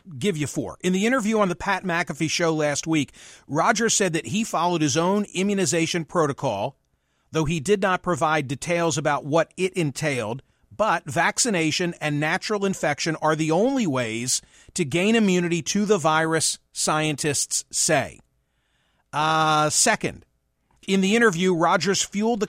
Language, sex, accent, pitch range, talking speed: English, male, American, 155-195 Hz, 150 wpm